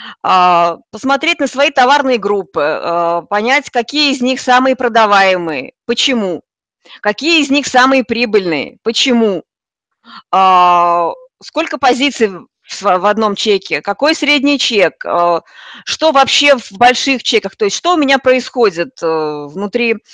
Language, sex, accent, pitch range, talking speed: Russian, female, native, 210-275 Hz, 115 wpm